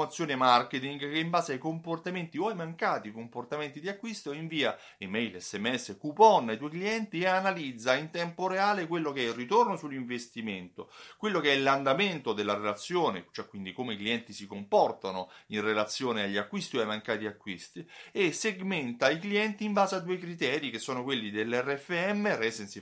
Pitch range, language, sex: 115-185 Hz, Italian, male